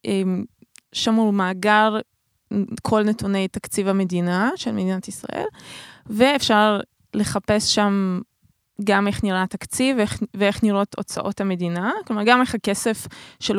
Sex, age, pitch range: female, 20-39, 200-245 Hz